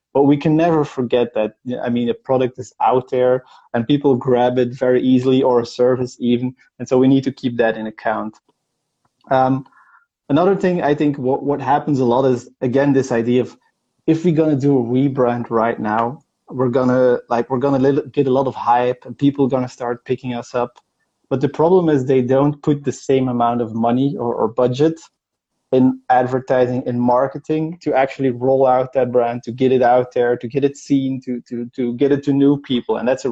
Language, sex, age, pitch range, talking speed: English, male, 20-39, 120-135 Hz, 215 wpm